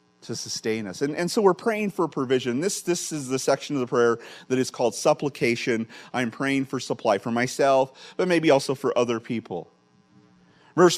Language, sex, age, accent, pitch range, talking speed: English, male, 40-59, American, 105-140 Hz, 190 wpm